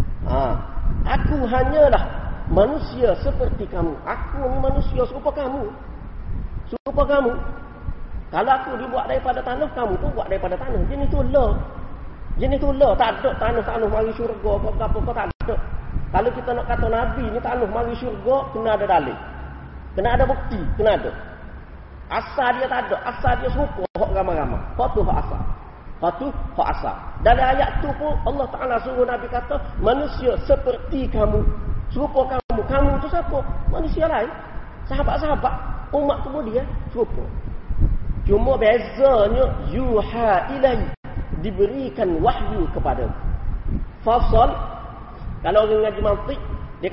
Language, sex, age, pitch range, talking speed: Malay, male, 40-59, 215-270 Hz, 135 wpm